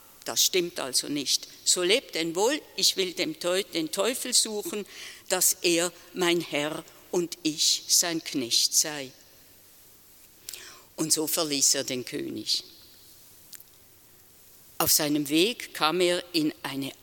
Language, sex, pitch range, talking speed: German, female, 155-255 Hz, 125 wpm